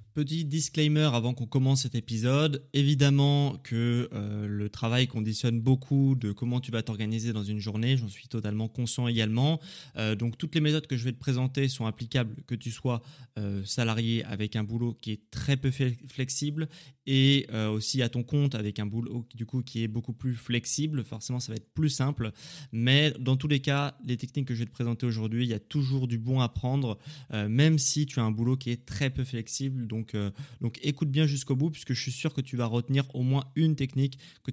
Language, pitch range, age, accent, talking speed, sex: French, 115-140 Hz, 20-39, French, 215 wpm, male